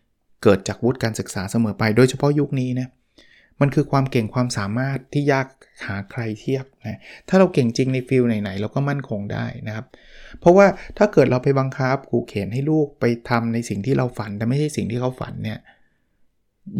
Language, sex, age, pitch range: Thai, male, 20-39, 115-145 Hz